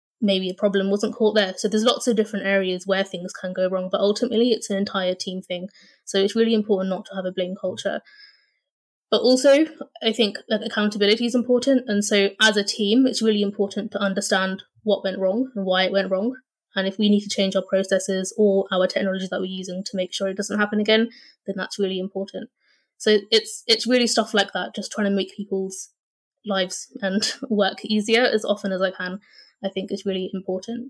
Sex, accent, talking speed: female, British, 215 wpm